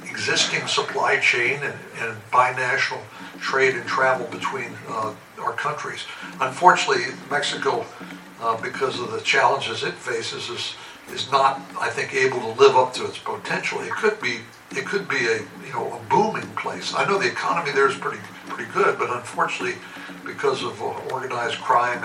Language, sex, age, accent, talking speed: English, male, 60-79, American, 170 wpm